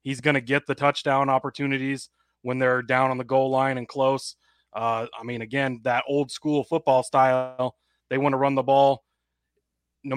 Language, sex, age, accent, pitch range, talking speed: English, male, 20-39, American, 125-140 Hz, 190 wpm